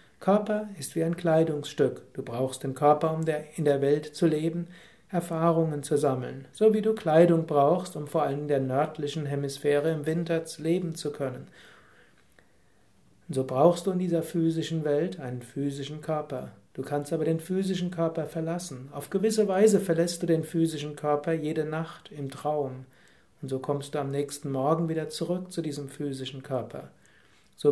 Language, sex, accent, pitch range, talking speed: German, male, German, 140-165 Hz, 170 wpm